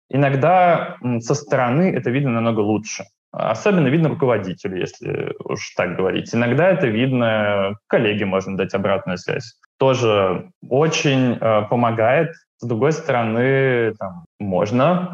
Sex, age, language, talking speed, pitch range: male, 20-39, Russian, 125 wpm, 110-150 Hz